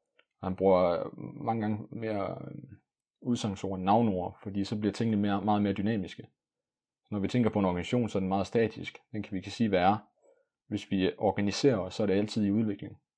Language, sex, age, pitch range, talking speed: Danish, male, 30-49, 95-115 Hz, 205 wpm